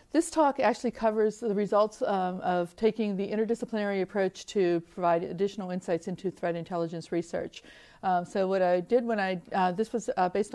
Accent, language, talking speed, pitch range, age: American, English, 180 wpm, 180-225 Hz, 40-59